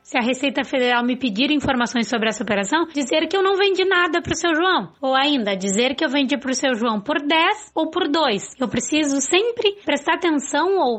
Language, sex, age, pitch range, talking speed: Portuguese, female, 20-39, 250-330 Hz, 225 wpm